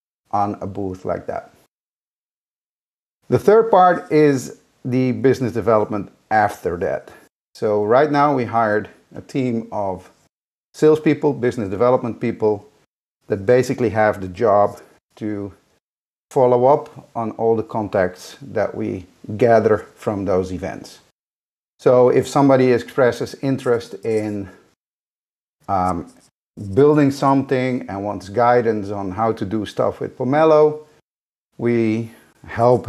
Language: English